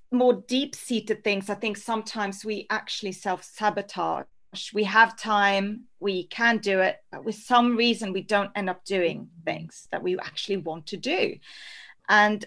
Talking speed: 160 wpm